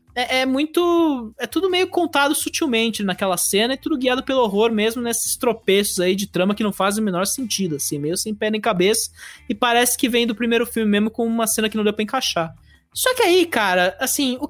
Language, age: English, 20-39